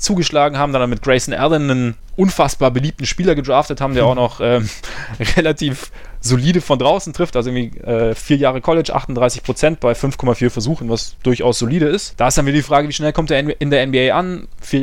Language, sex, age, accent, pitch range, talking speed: German, male, 20-39, German, 120-150 Hz, 205 wpm